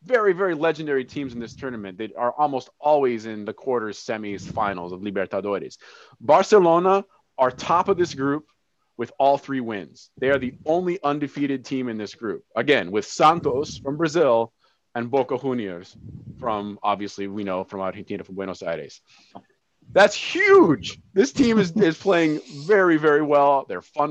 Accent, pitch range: American, 120-160 Hz